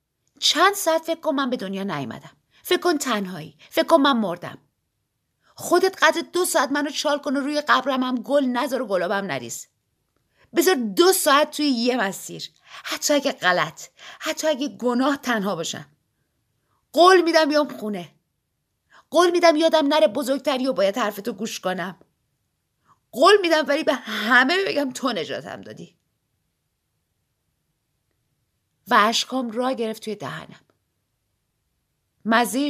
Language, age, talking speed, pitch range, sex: Persian, 50-69, 135 wpm, 200-290 Hz, female